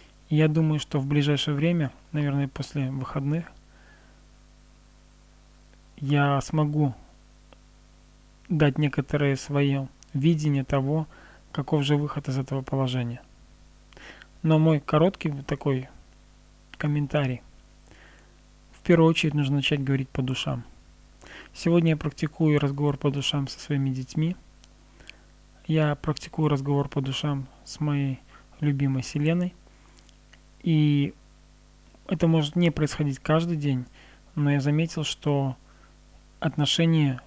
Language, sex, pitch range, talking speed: Russian, male, 135-155 Hz, 105 wpm